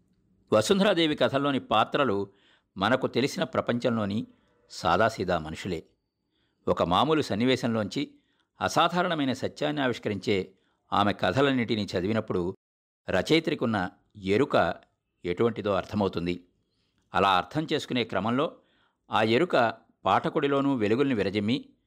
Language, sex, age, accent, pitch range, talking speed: Telugu, male, 50-69, native, 95-140 Hz, 80 wpm